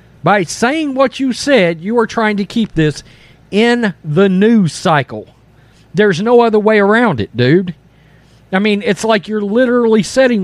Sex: male